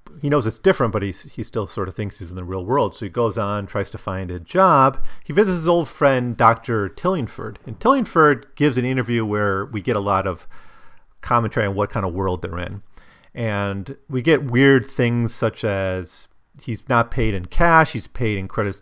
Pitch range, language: 95-125 Hz, English